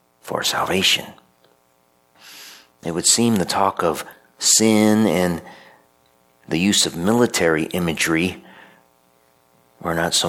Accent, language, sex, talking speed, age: American, English, male, 105 wpm, 50-69